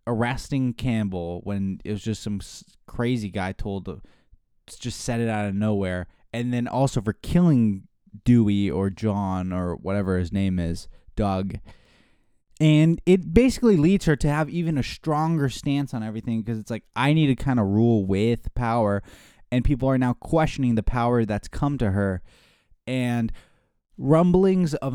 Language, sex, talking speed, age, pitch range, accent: English, male, 165 wpm, 20-39, 105-140 Hz, American